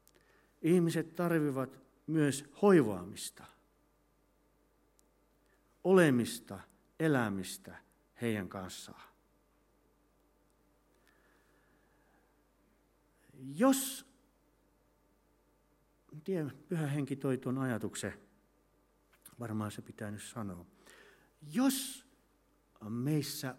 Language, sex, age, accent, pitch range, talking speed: Finnish, male, 60-79, native, 105-165 Hz, 55 wpm